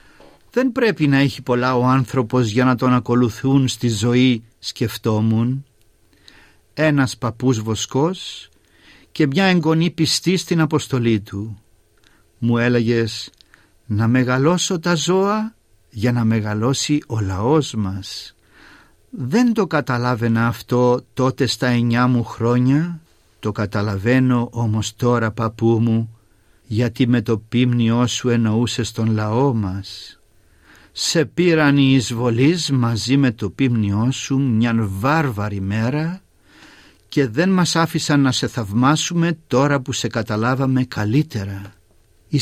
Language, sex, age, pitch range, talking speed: Greek, male, 50-69, 110-150 Hz, 120 wpm